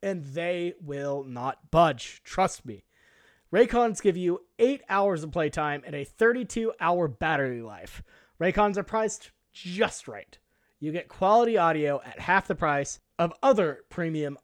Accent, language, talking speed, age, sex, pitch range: American, English, 145 wpm, 30-49, male, 155-220 Hz